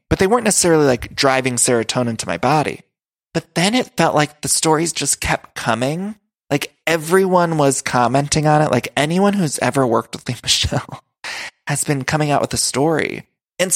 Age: 20-39